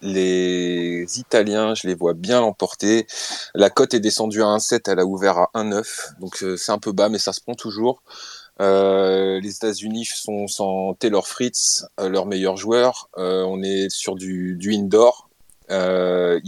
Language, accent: French, French